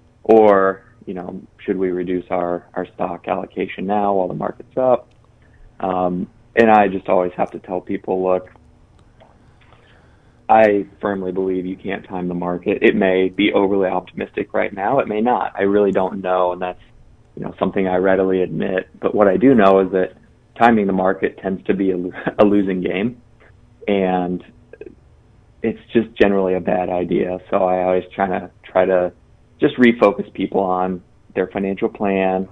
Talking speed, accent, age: 170 wpm, American, 20-39